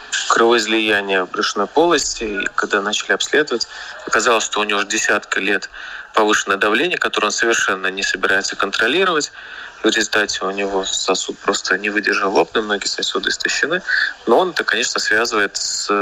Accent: native